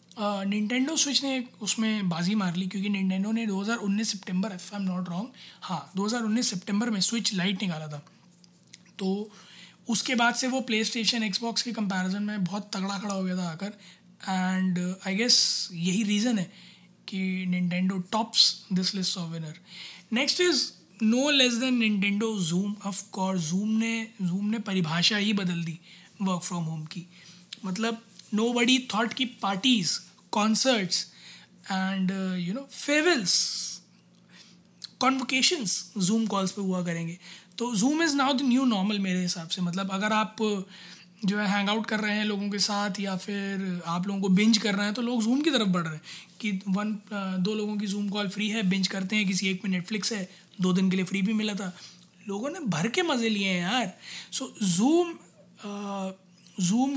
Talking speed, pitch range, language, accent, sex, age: 180 wpm, 185-225 Hz, Hindi, native, male, 20-39